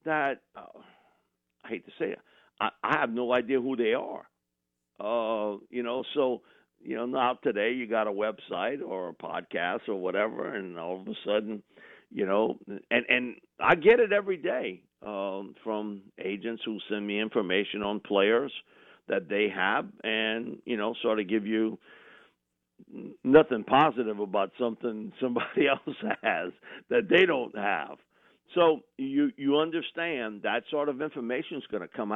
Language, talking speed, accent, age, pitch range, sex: English, 165 wpm, American, 50-69, 105-135 Hz, male